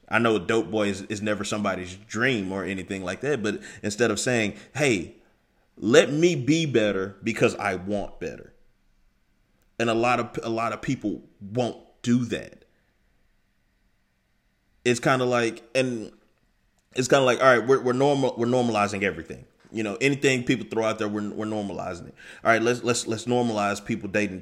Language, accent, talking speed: English, American, 180 wpm